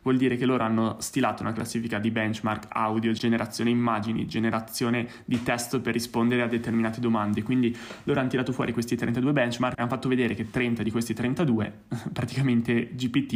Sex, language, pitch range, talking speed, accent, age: male, Italian, 115-125 Hz, 180 wpm, native, 20-39